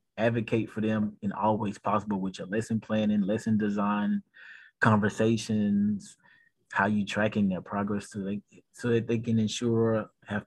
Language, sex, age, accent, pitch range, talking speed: English, male, 20-39, American, 100-115 Hz, 150 wpm